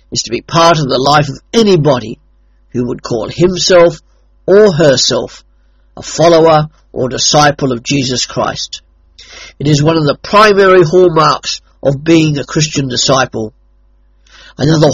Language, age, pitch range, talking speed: English, 50-69, 115-165 Hz, 140 wpm